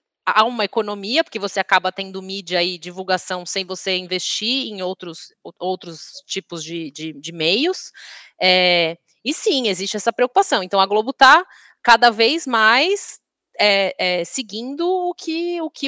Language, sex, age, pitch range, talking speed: Portuguese, female, 20-39, 185-275 Hz, 130 wpm